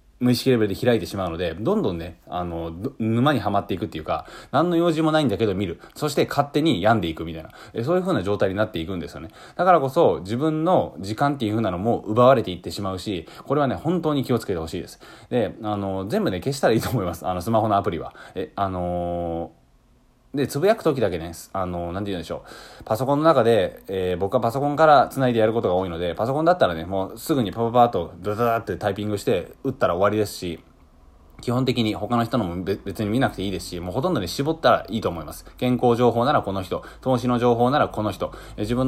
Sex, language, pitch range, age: male, Japanese, 95-130 Hz, 20-39